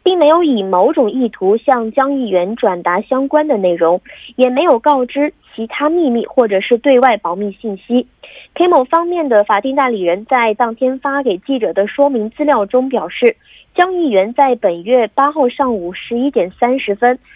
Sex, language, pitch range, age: female, Korean, 210-285 Hz, 20-39